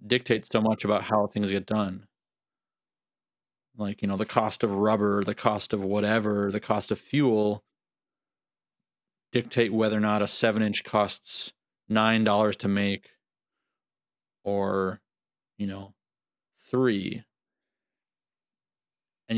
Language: English